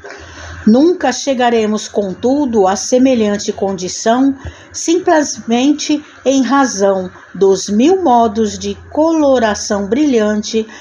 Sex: female